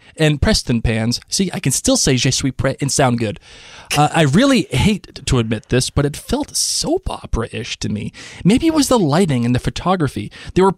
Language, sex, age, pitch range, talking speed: English, male, 20-39, 125-200 Hz, 210 wpm